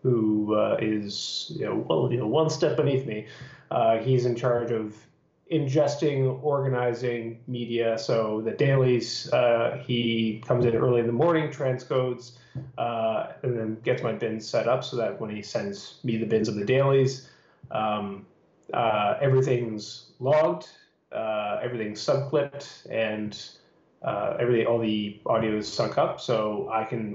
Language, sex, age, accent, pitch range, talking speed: English, male, 30-49, American, 115-130 Hz, 155 wpm